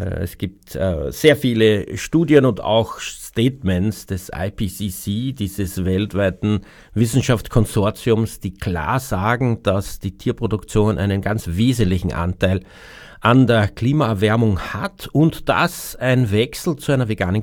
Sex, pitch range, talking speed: male, 100-125 Hz, 120 wpm